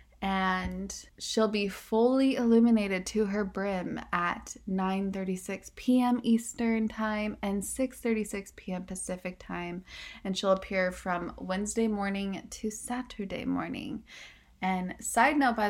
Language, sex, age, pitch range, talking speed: English, female, 20-39, 190-230 Hz, 120 wpm